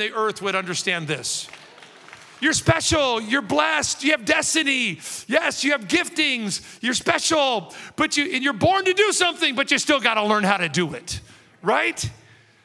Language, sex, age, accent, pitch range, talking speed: English, male, 50-69, American, 170-240 Hz, 175 wpm